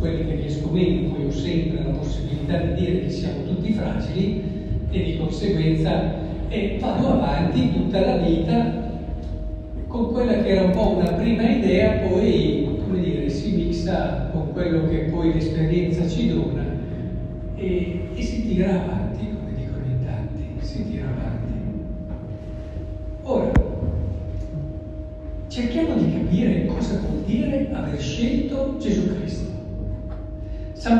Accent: native